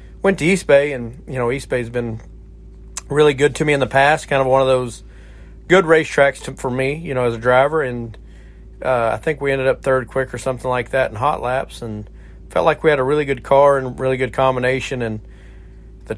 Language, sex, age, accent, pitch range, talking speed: English, male, 40-59, American, 110-140 Hz, 235 wpm